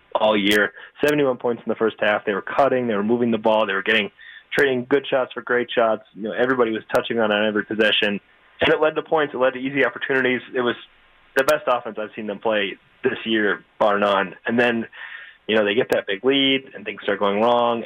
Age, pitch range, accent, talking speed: 30-49, 105-125 Hz, American, 240 wpm